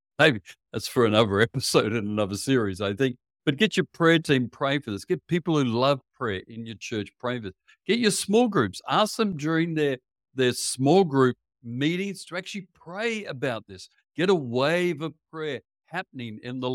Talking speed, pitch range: 195 wpm, 105-145 Hz